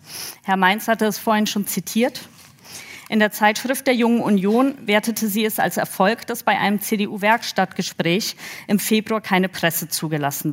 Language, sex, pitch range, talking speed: German, female, 195-240 Hz, 155 wpm